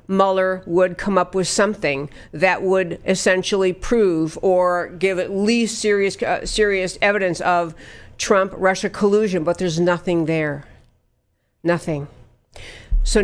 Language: English